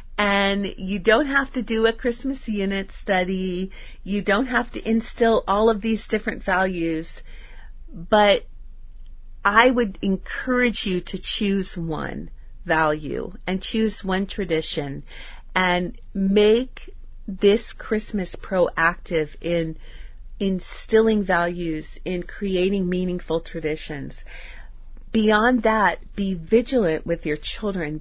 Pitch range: 170-220 Hz